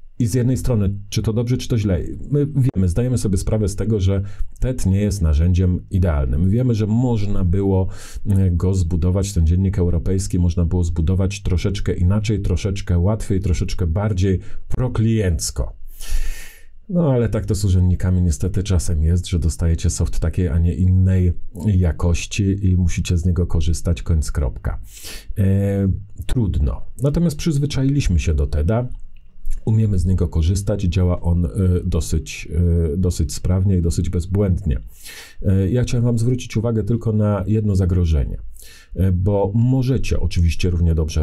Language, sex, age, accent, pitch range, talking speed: Polish, male, 40-59, native, 85-105 Hz, 140 wpm